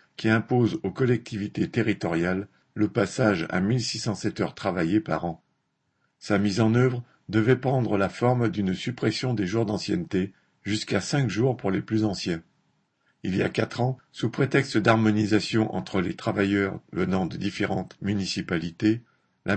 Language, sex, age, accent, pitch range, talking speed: French, male, 50-69, French, 100-125 Hz, 155 wpm